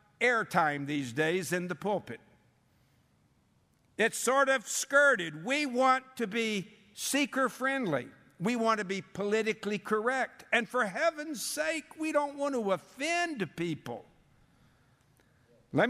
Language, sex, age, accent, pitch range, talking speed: English, male, 60-79, American, 175-230 Hz, 120 wpm